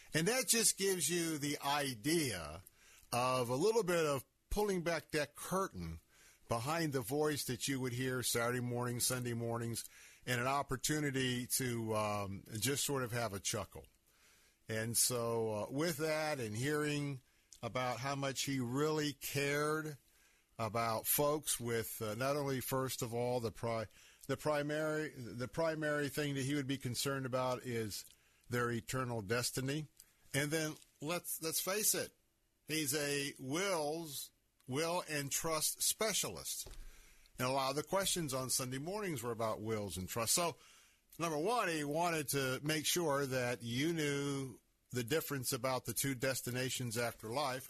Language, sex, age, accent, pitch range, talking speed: English, male, 50-69, American, 120-150 Hz, 150 wpm